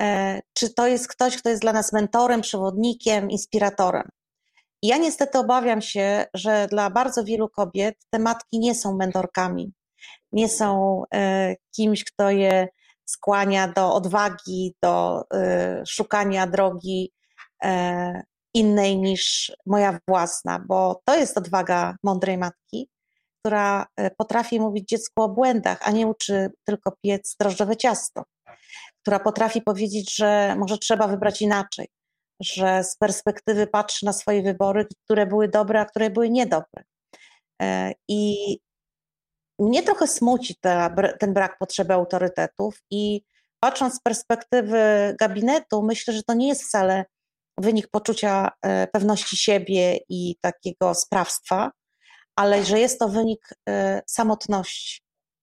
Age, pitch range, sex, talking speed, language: 30-49, 190-220 Hz, female, 125 wpm, Polish